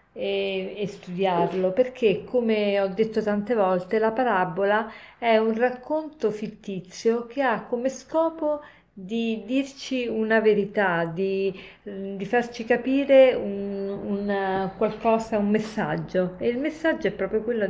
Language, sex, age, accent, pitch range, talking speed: Italian, female, 40-59, native, 190-230 Hz, 130 wpm